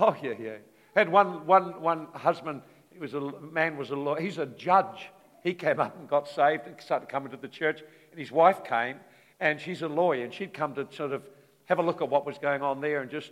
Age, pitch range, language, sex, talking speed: 60-79, 135-175 Hz, English, male, 250 wpm